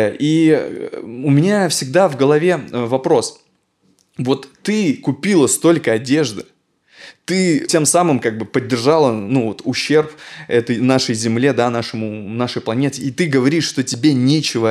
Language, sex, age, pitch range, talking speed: Russian, male, 20-39, 115-150 Hz, 140 wpm